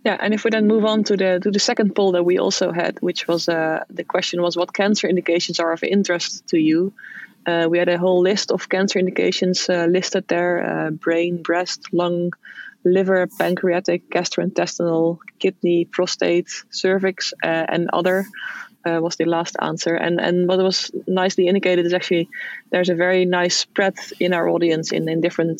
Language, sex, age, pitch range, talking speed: English, female, 20-39, 170-195 Hz, 190 wpm